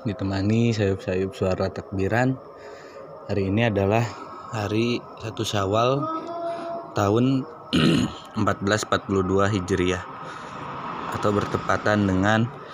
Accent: native